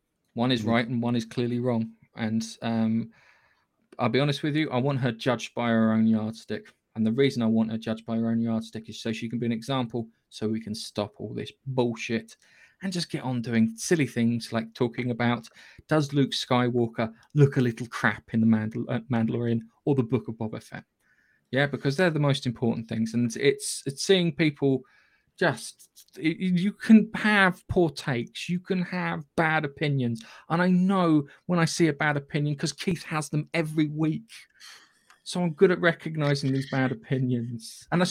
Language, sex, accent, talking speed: English, male, British, 190 wpm